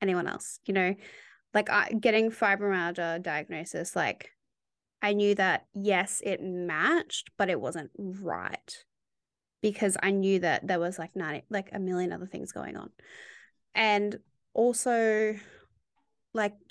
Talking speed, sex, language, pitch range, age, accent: 130 wpm, female, English, 180-220 Hz, 20-39, Australian